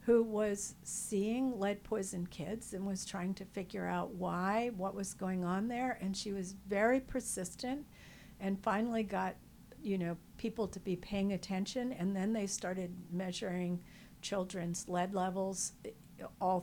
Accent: American